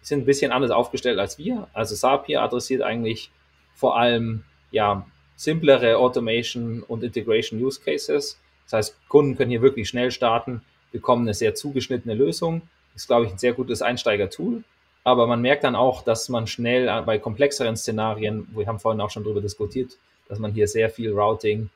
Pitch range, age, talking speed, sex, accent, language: 105-125 Hz, 20-39, 180 wpm, male, German, German